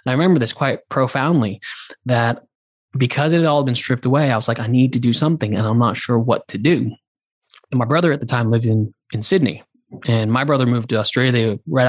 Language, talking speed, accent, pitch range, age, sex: English, 225 wpm, American, 115-140 Hz, 20-39, male